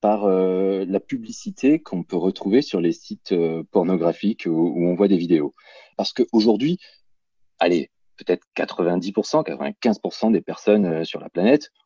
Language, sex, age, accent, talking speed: French, male, 30-49, French, 145 wpm